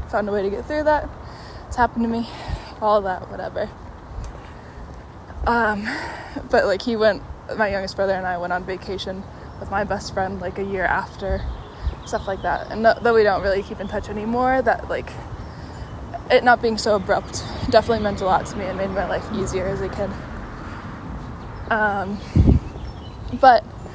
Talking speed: 180 wpm